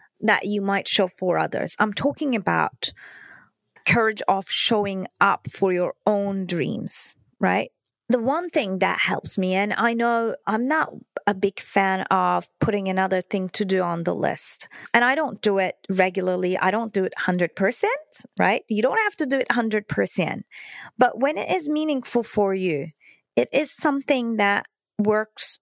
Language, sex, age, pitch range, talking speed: English, female, 30-49, 190-245 Hz, 170 wpm